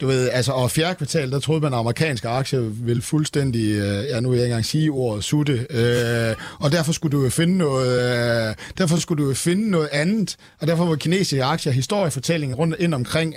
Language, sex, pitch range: Danish, male, 120-155 Hz